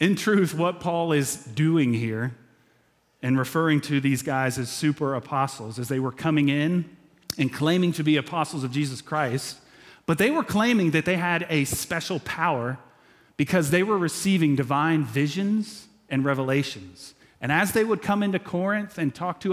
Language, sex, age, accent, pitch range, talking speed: English, male, 30-49, American, 125-165 Hz, 170 wpm